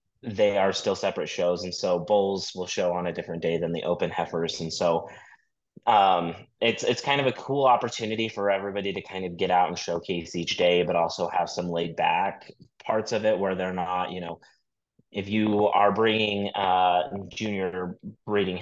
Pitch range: 90-105 Hz